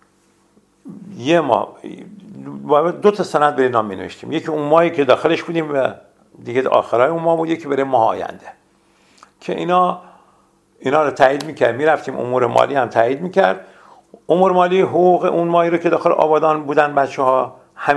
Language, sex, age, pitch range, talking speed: Persian, male, 60-79, 120-170 Hz, 160 wpm